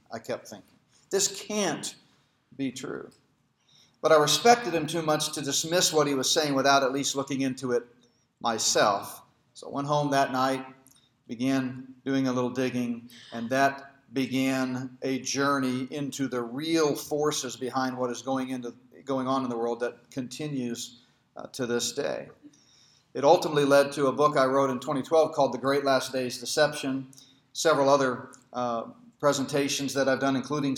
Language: English